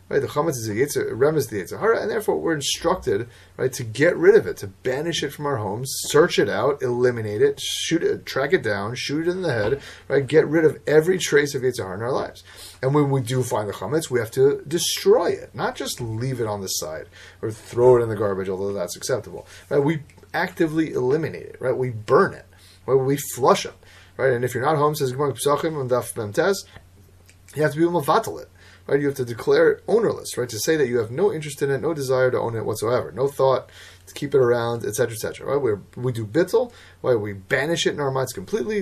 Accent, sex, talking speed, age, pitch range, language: American, male, 230 wpm, 30-49, 110-170 Hz, English